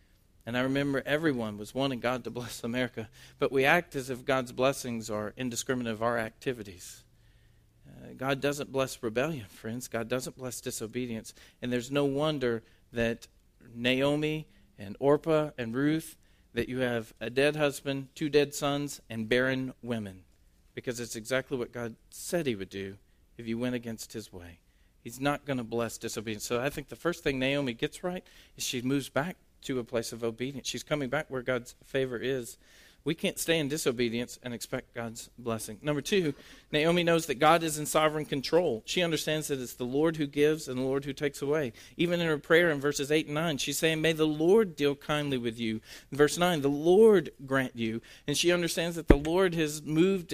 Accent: American